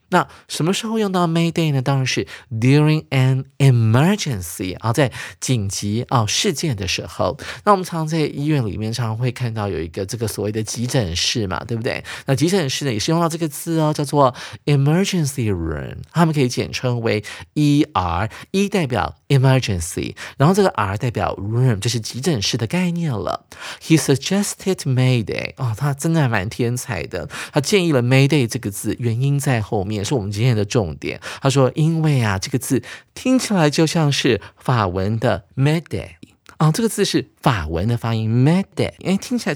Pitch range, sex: 115-160 Hz, male